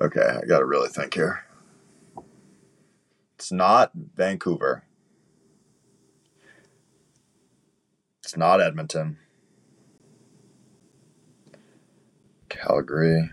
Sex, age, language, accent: male, 20-39, English, American